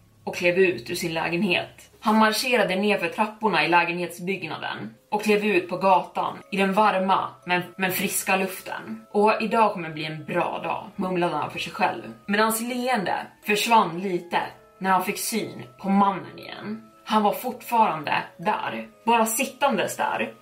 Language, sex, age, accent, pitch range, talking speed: Swedish, female, 20-39, native, 175-215 Hz, 160 wpm